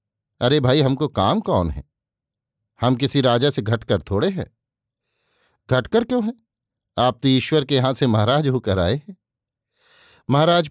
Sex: male